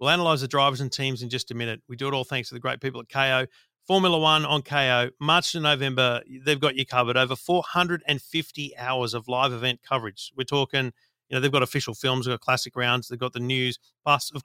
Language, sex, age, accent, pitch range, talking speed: English, male, 40-59, Australian, 125-150 Hz, 235 wpm